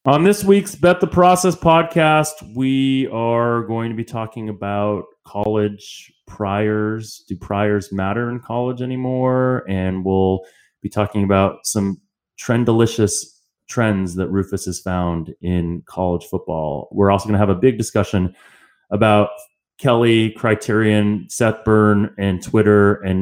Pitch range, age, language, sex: 95-115 Hz, 30-49, English, male